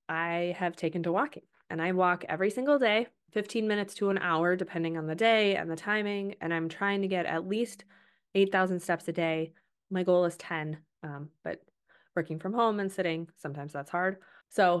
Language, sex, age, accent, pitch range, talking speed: English, female, 20-39, American, 170-200 Hz, 200 wpm